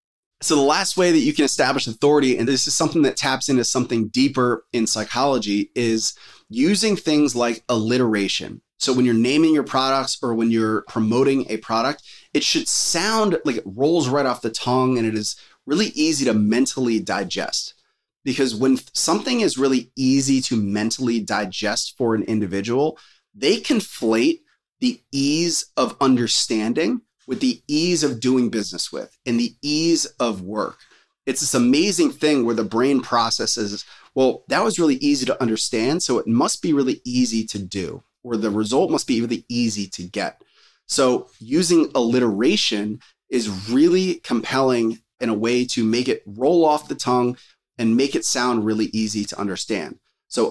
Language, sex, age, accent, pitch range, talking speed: English, male, 30-49, American, 115-150 Hz, 170 wpm